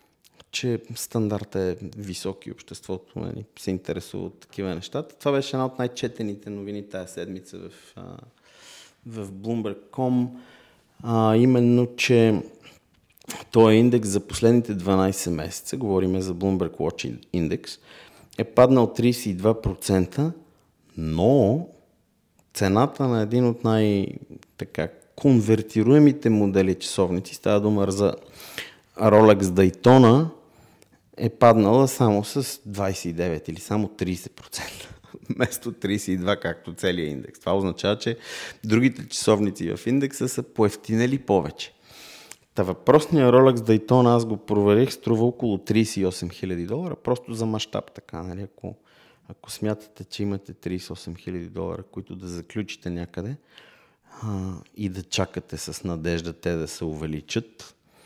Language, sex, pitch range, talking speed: Bulgarian, male, 95-120 Hz, 120 wpm